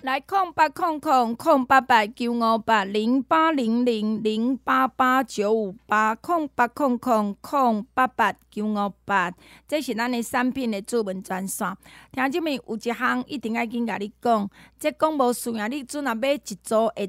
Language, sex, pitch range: Chinese, female, 210-265 Hz